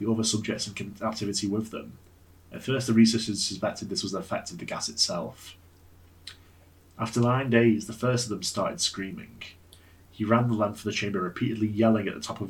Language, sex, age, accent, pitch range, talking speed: English, male, 30-49, British, 90-115 Hz, 200 wpm